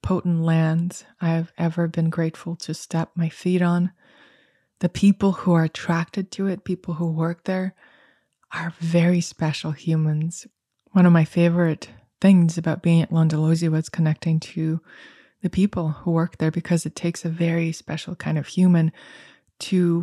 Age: 20-39